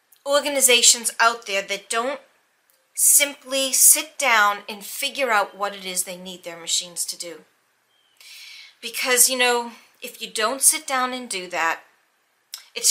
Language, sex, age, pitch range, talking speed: English, female, 40-59, 210-275 Hz, 150 wpm